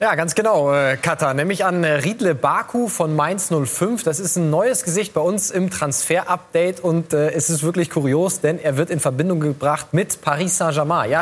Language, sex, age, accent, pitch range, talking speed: German, male, 20-39, German, 140-170 Hz, 205 wpm